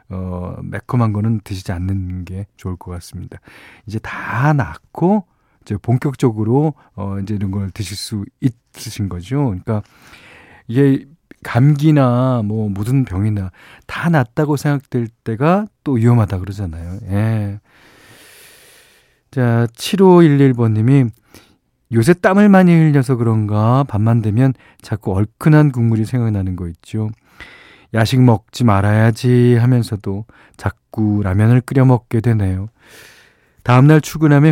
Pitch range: 100-140 Hz